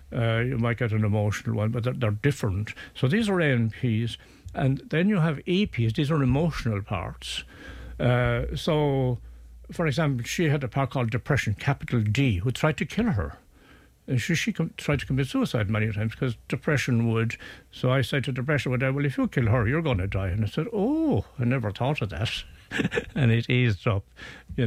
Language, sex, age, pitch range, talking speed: English, male, 60-79, 110-140 Hz, 200 wpm